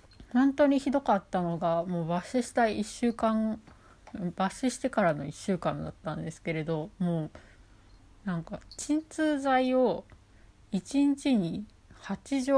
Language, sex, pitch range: Japanese, female, 155-220 Hz